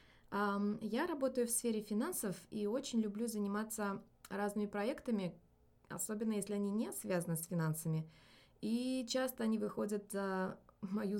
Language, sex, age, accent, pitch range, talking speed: Russian, female, 20-39, native, 190-225 Hz, 130 wpm